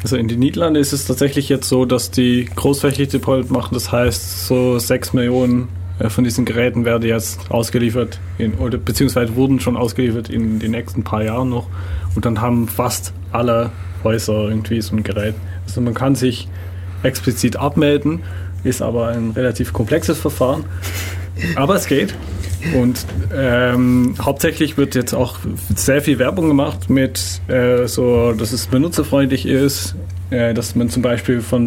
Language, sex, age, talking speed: German, male, 30-49, 155 wpm